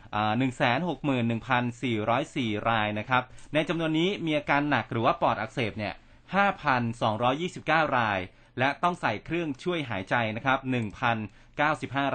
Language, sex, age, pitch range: Thai, male, 30-49, 115-145 Hz